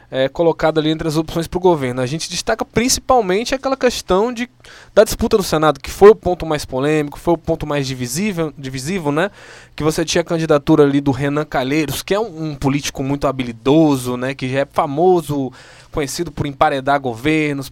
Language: Portuguese